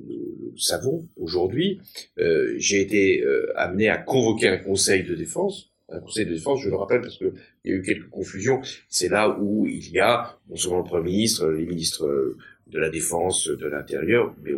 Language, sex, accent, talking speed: French, male, French, 200 wpm